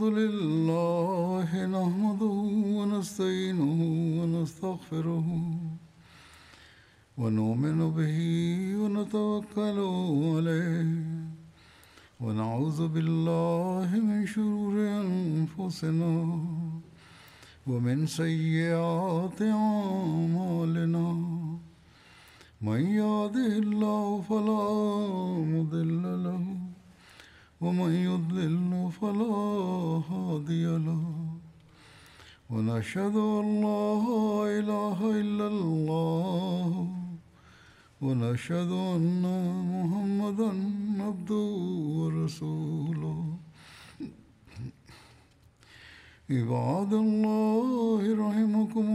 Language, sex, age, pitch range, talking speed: Bulgarian, male, 60-79, 160-205 Hz, 35 wpm